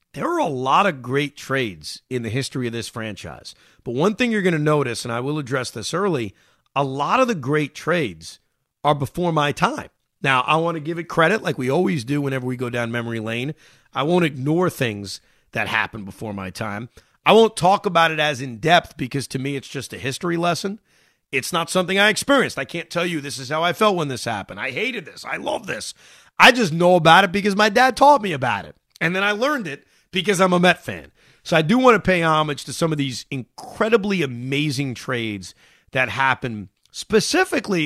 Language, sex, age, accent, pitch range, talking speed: English, male, 30-49, American, 130-195 Hz, 220 wpm